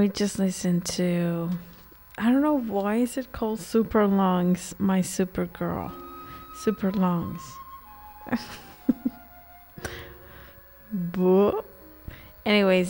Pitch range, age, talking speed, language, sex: 175-210 Hz, 20-39, 90 wpm, English, female